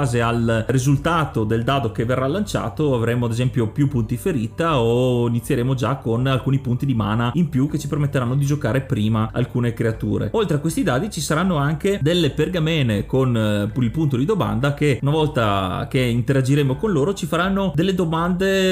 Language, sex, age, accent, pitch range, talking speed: Italian, male, 30-49, native, 120-155 Hz, 180 wpm